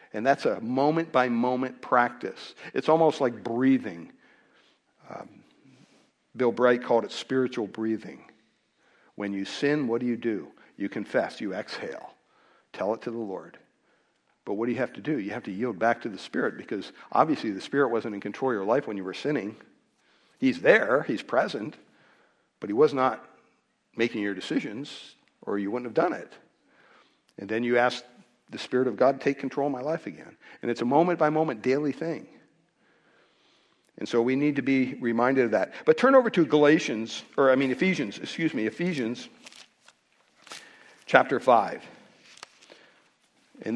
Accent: American